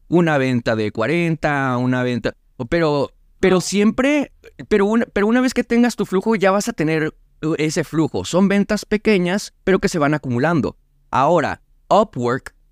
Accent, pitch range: Mexican, 125-180 Hz